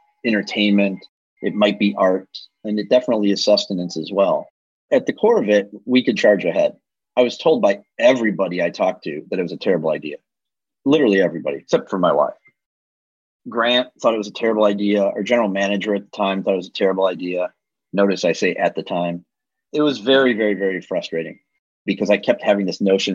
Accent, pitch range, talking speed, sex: American, 90-115 Hz, 200 wpm, male